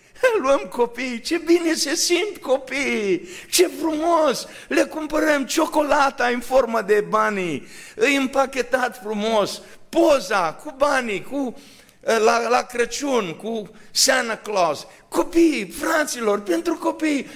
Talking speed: 110 wpm